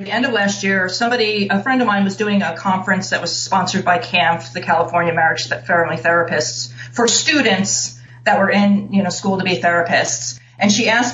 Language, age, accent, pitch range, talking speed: English, 30-49, American, 170-220 Hz, 210 wpm